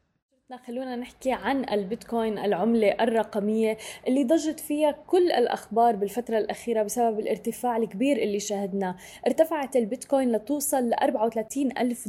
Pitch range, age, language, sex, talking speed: 210-245 Hz, 10-29, Arabic, female, 120 wpm